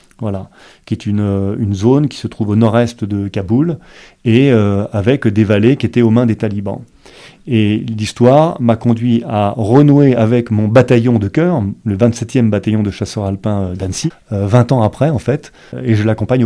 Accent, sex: French, male